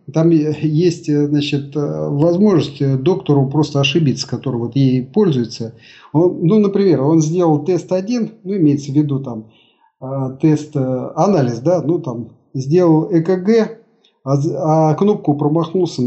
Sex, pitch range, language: male, 140-175 Hz, Russian